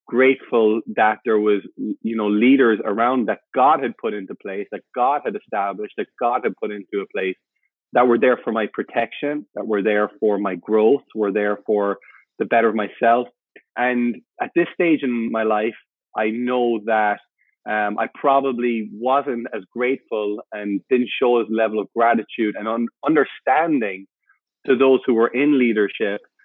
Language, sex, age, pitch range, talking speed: English, male, 30-49, 105-120 Hz, 170 wpm